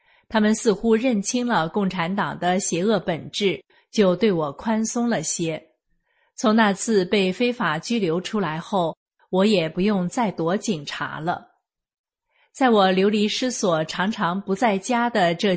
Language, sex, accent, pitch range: Chinese, female, native, 175-225 Hz